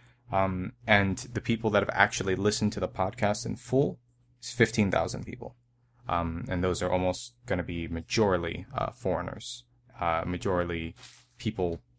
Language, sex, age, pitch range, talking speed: English, male, 20-39, 85-120 Hz, 150 wpm